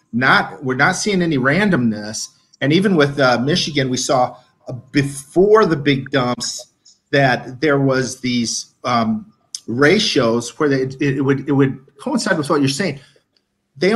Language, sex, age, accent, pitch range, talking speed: English, male, 40-59, American, 120-155 Hz, 160 wpm